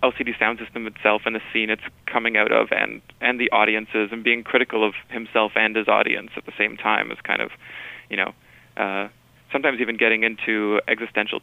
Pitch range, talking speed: 105-115 Hz, 200 wpm